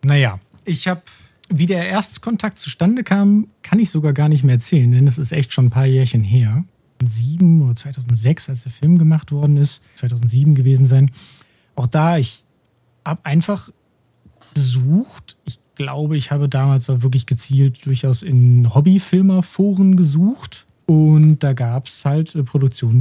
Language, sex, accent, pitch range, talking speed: German, male, German, 120-160 Hz, 155 wpm